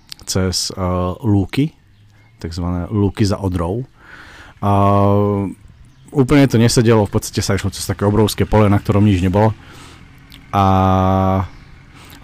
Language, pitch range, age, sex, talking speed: Slovak, 100-125 Hz, 40-59, male, 120 wpm